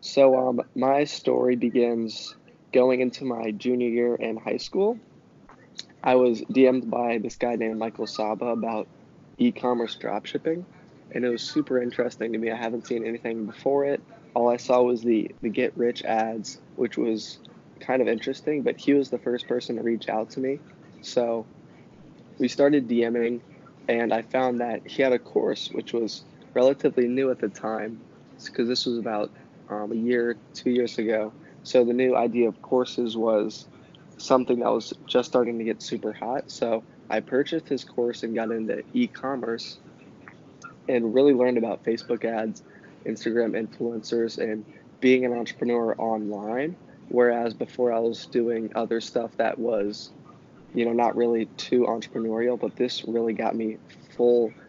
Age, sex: 20-39, male